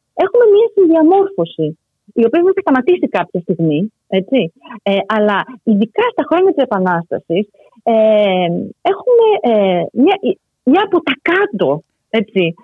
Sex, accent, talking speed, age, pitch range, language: female, native, 130 wpm, 30-49, 180-275 Hz, Greek